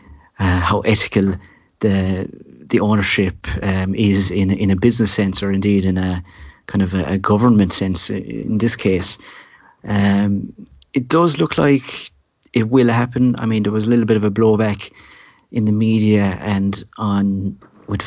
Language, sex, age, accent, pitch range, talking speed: English, male, 40-59, British, 95-110 Hz, 165 wpm